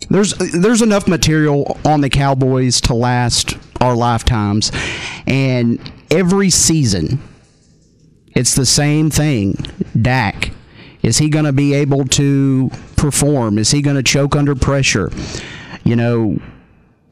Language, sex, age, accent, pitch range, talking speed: English, male, 40-59, American, 130-160 Hz, 125 wpm